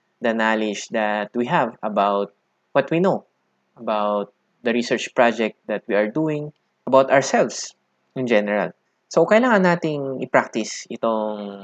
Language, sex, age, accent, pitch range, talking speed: Filipino, male, 20-39, native, 105-130 Hz, 135 wpm